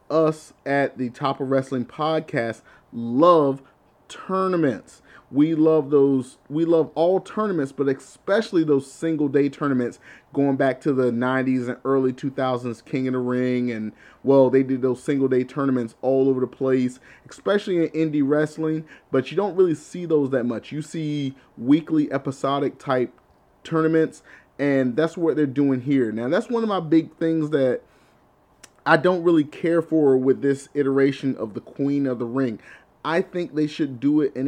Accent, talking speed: American, 170 wpm